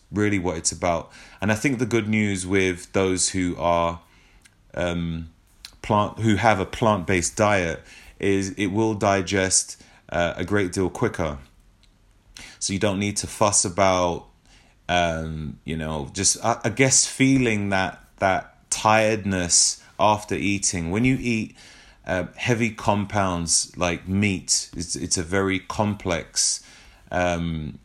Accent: British